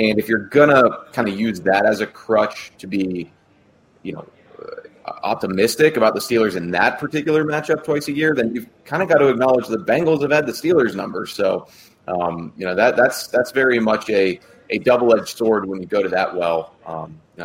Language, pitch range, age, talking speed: English, 95-120 Hz, 30-49, 205 wpm